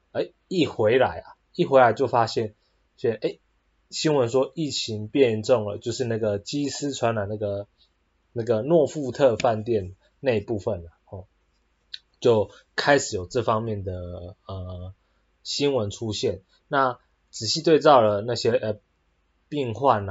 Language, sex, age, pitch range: Chinese, male, 20-39, 100-130 Hz